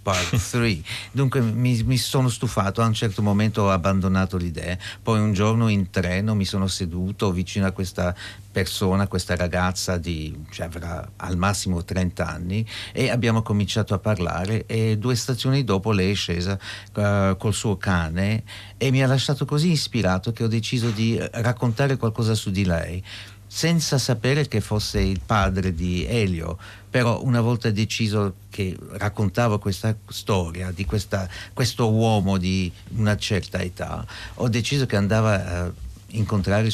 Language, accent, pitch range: Italian, native, 95-115 Hz